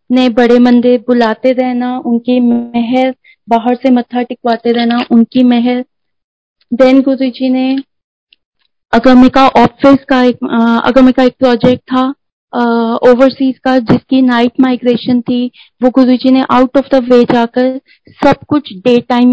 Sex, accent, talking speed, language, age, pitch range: female, native, 135 wpm, Hindi, 30-49, 240-265 Hz